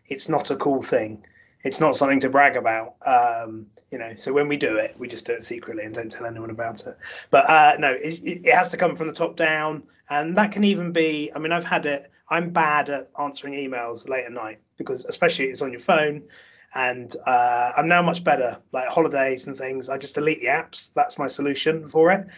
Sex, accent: male, British